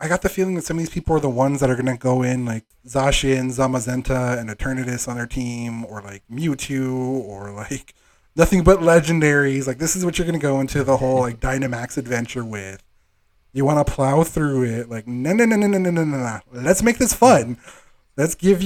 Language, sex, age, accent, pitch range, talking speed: English, male, 20-39, American, 120-160 Hz, 230 wpm